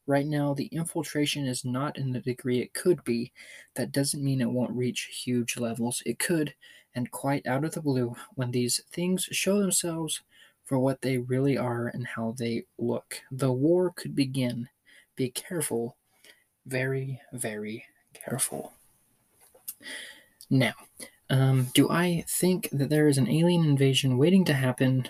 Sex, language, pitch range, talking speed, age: male, English, 125-155 Hz, 155 wpm, 20-39